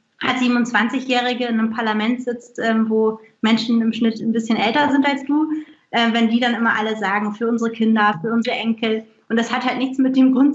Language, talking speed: German, 215 wpm